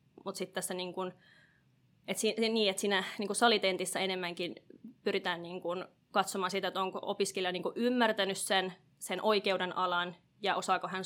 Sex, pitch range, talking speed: female, 180-195 Hz, 150 wpm